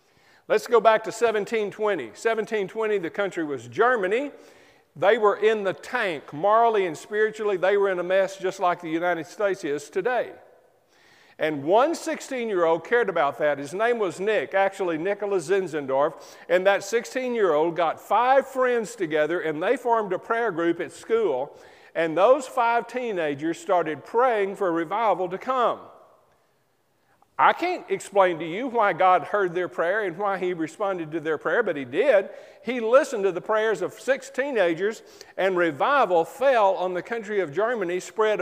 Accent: American